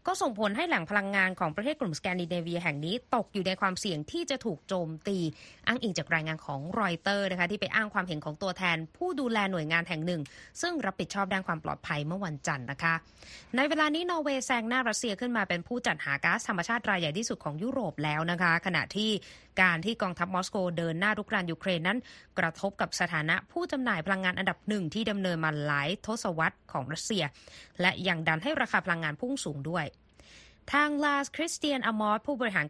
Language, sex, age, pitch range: Thai, female, 20-39, 170-230 Hz